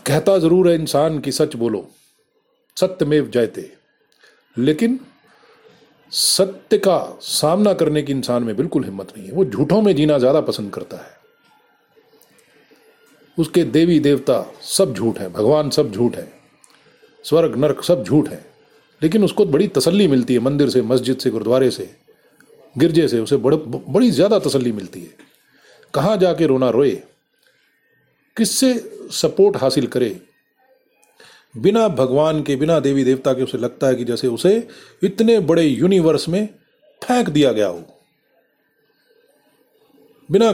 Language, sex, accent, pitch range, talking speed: Hindi, male, native, 140-195 Hz, 140 wpm